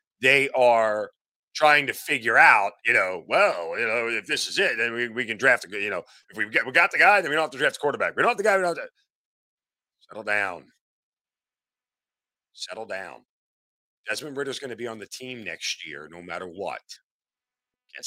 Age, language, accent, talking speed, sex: 40-59, English, American, 215 wpm, male